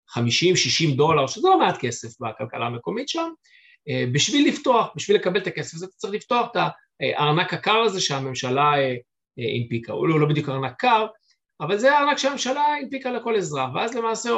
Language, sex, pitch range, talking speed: Hebrew, male, 140-225 Hz, 165 wpm